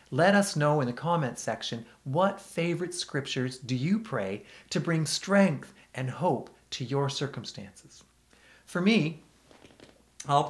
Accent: American